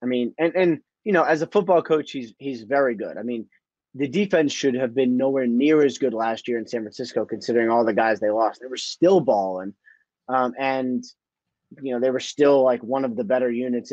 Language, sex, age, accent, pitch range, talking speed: English, male, 30-49, American, 115-140 Hz, 230 wpm